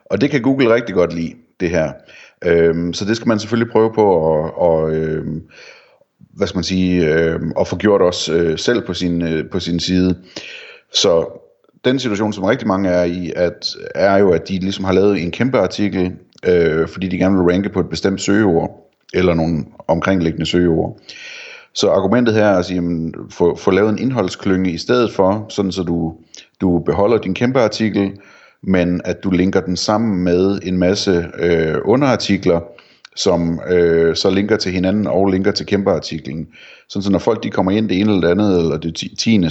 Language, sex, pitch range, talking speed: Danish, male, 85-100 Hz, 180 wpm